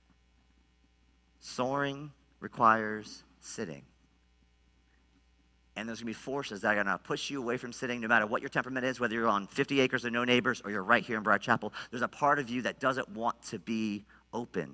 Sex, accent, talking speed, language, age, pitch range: male, American, 205 wpm, English, 40-59, 115-150 Hz